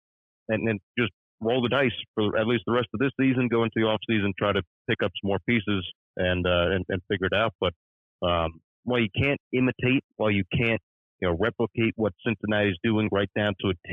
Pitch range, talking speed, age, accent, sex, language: 95-115 Hz, 235 wpm, 40-59, American, male, English